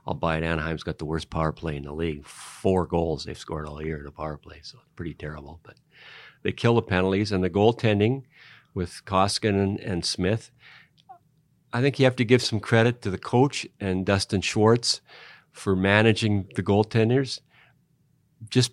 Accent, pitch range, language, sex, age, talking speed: American, 85-115 Hz, English, male, 50-69, 185 wpm